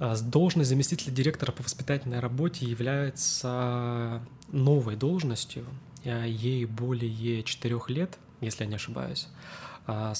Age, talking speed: 20-39, 100 wpm